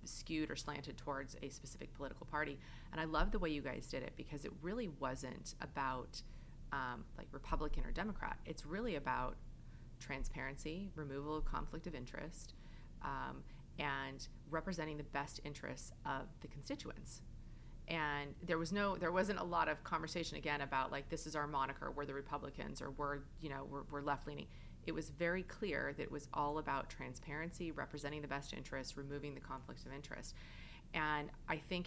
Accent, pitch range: American, 135-160 Hz